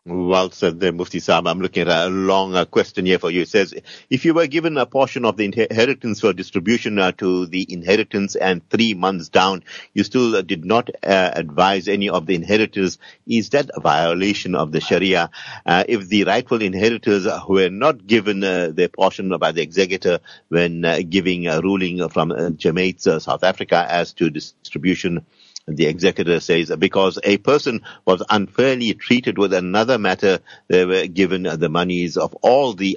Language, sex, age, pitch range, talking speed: English, male, 50-69, 90-105 Hz, 180 wpm